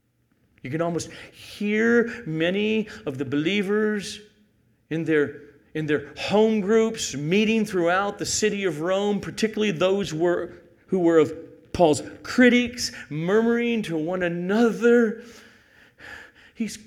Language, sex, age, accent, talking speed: English, male, 40-59, American, 110 wpm